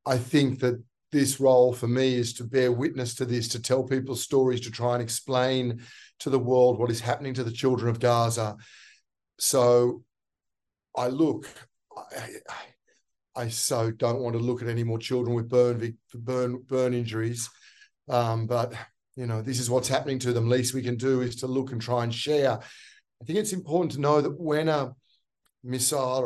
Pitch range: 120-145 Hz